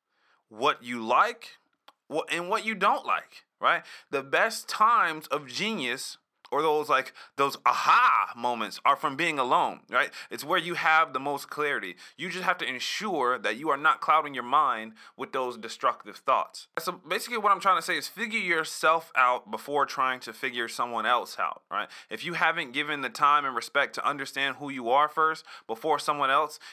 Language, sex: English, male